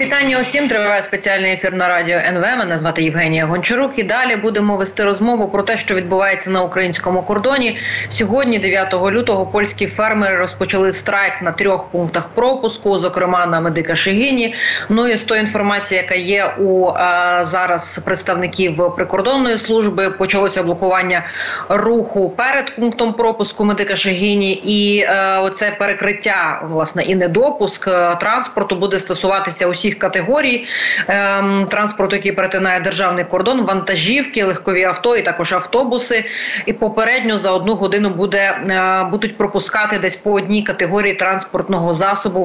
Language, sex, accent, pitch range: Ukrainian, female, native, 190-225 Hz